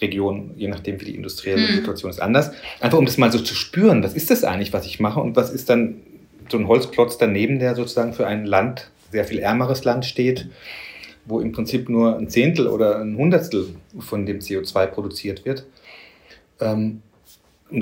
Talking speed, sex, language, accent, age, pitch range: 190 wpm, male, German, German, 30-49, 100-120 Hz